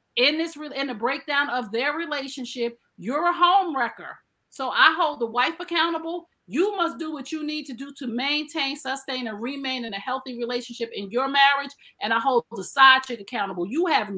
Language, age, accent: English, 40-59, American